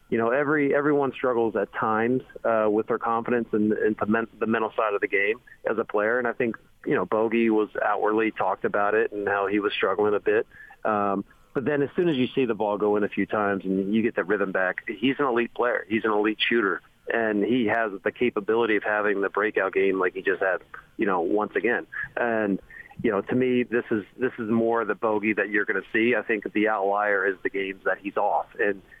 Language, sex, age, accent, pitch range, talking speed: English, male, 40-59, American, 105-130 Hz, 245 wpm